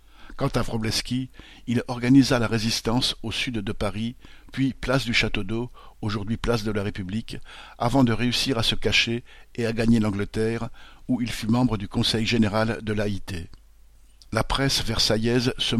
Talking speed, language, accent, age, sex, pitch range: 165 wpm, French, French, 60-79, male, 105-125 Hz